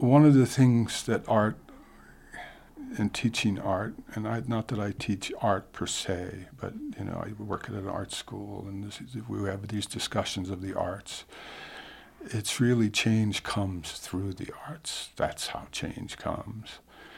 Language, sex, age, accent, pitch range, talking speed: English, male, 60-79, American, 100-125 Hz, 165 wpm